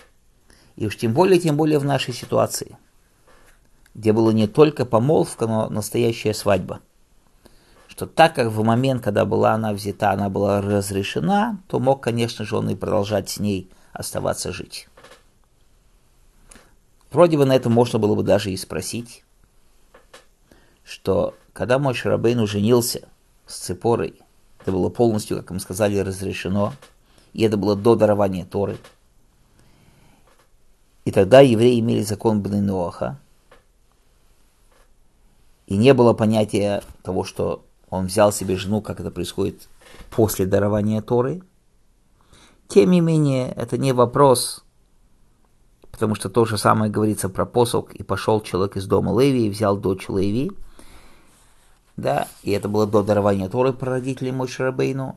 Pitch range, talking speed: 100-120 Hz, 135 wpm